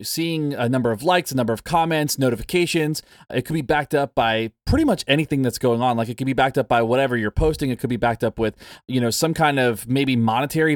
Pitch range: 115-150 Hz